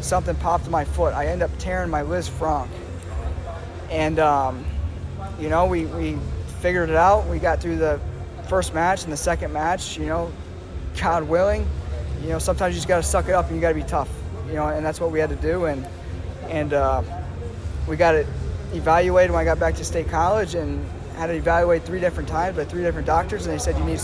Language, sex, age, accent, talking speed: English, male, 20-39, American, 225 wpm